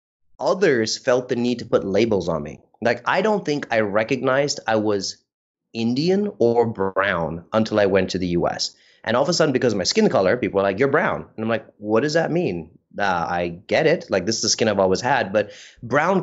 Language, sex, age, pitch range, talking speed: English, male, 30-49, 105-135 Hz, 230 wpm